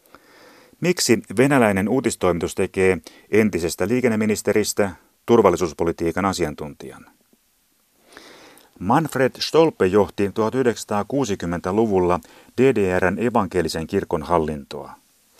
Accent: native